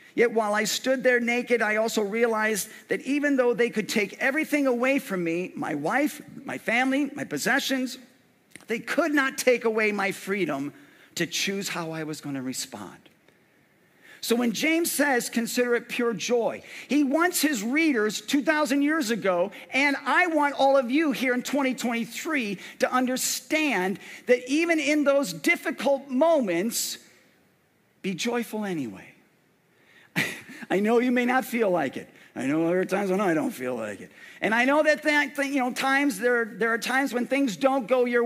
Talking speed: 175 wpm